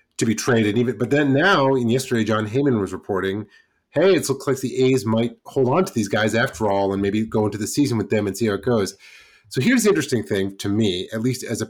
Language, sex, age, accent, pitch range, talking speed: English, male, 30-49, American, 100-130 Hz, 265 wpm